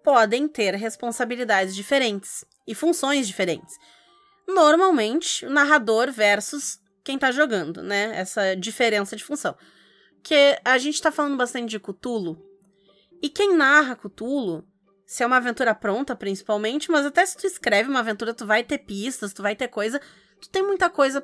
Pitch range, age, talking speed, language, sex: 215-290 Hz, 20-39, 160 wpm, Portuguese, female